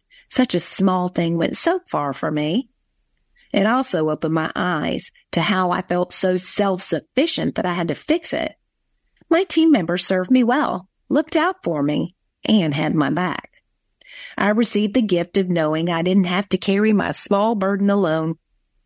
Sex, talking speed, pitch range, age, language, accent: female, 175 wpm, 175-230 Hz, 40-59, English, American